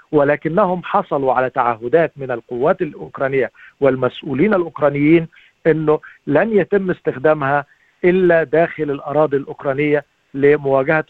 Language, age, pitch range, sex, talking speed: Arabic, 50-69, 145-185 Hz, male, 95 wpm